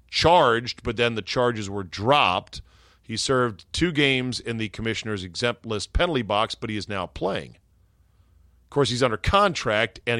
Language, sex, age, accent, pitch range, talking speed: English, male, 40-59, American, 95-125 Hz, 170 wpm